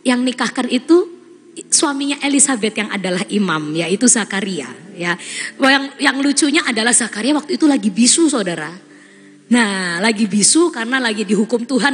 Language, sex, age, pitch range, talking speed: Indonesian, female, 20-39, 220-320 Hz, 140 wpm